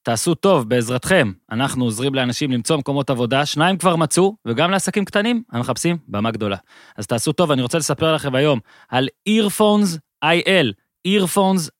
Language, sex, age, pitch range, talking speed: Hebrew, male, 20-39, 130-175 Hz, 155 wpm